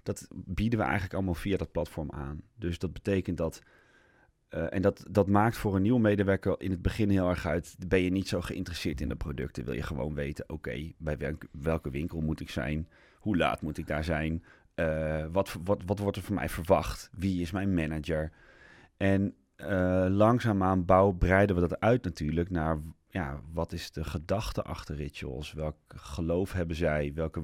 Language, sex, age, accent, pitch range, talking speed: Dutch, male, 30-49, Dutch, 80-95 Hz, 190 wpm